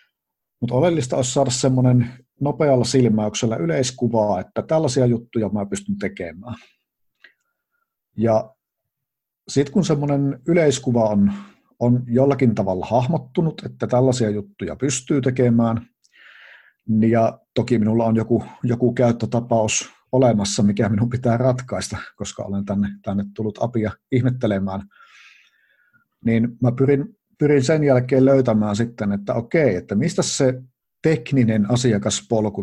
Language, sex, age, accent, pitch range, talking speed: Finnish, male, 50-69, native, 105-135 Hz, 115 wpm